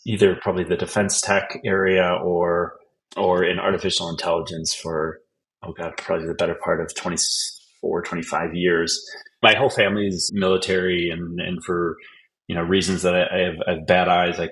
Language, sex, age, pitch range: English, male, 30-49, 85-95 Hz